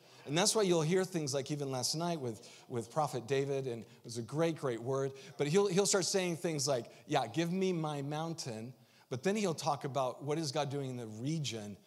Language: English